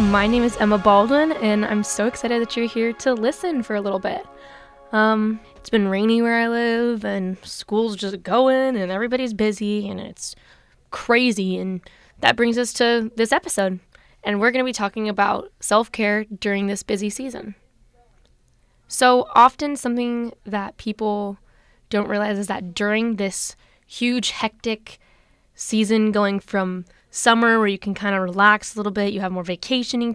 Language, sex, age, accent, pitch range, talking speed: English, female, 10-29, American, 195-235 Hz, 165 wpm